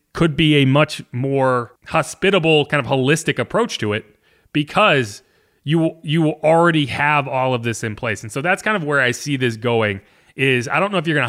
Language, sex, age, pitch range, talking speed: English, male, 30-49, 125-170 Hz, 215 wpm